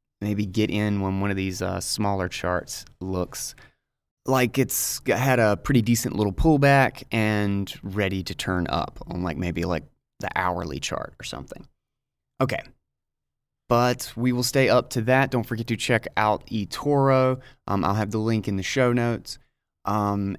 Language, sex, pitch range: English, male, 95-120 Hz